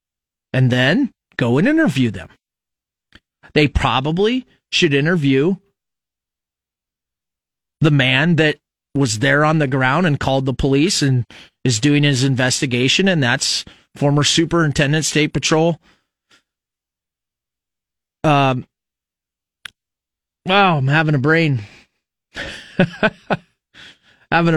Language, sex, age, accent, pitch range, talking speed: English, male, 30-49, American, 130-190 Hz, 100 wpm